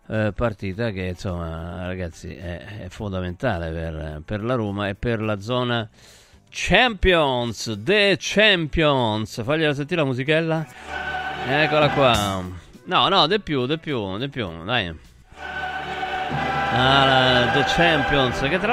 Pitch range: 110-155 Hz